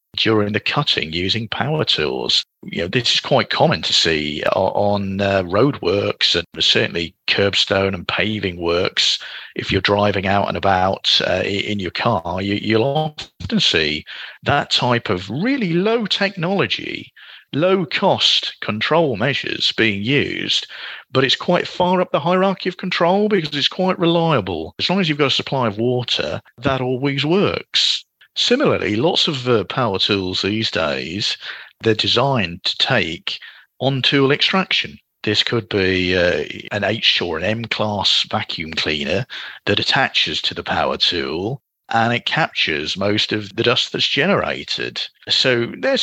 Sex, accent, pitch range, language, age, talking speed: male, British, 100-155 Hz, English, 40-59, 155 wpm